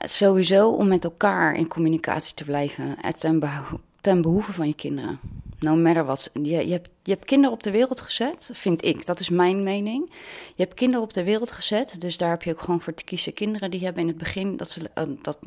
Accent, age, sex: Dutch, 30-49, female